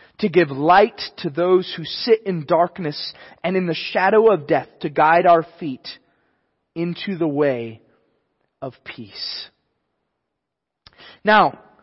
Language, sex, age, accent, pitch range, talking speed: English, male, 30-49, American, 165-225 Hz, 125 wpm